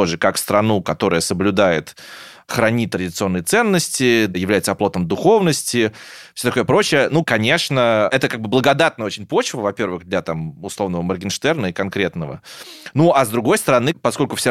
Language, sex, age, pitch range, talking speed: Russian, male, 20-39, 100-130 Hz, 145 wpm